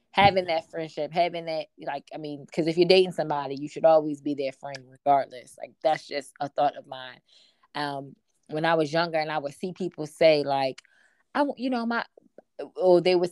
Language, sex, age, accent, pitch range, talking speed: English, female, 20-39, American, 155-200 Hz, 205 wpm